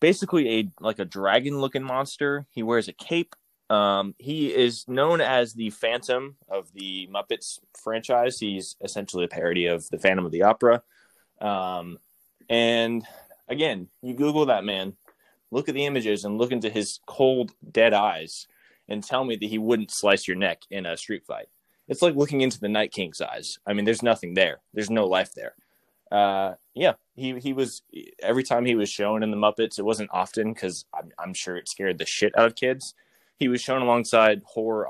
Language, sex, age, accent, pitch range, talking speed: English, male, 20-39, American, 105-125 Hz, 195 wpm